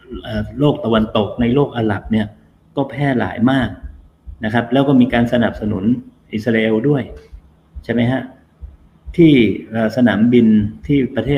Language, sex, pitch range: Thai, male, 90-125 Hz